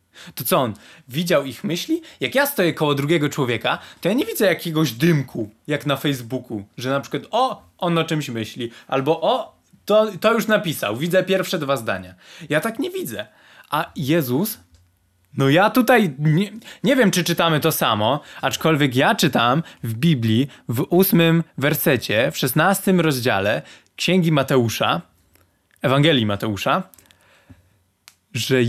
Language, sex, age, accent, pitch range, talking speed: Polish, male, 20-39, native, 125-190 Hz, 150 wpm